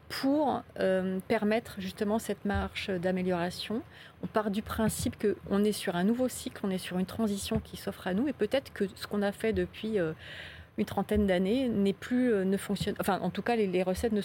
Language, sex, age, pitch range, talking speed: French, female, 30-49, 180-220 Hz, 215 wpm